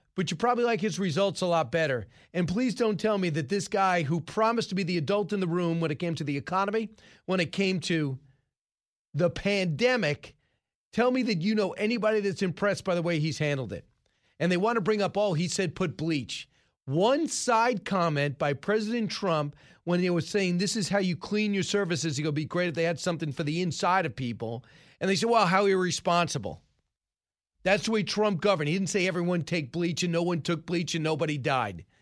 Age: 40-59